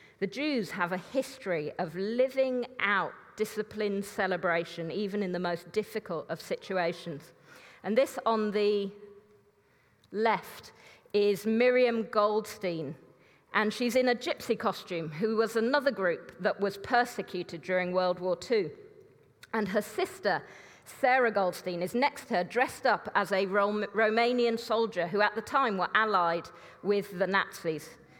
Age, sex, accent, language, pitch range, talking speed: 40-59, female, British, English, 180-230 Hz, 140 wpm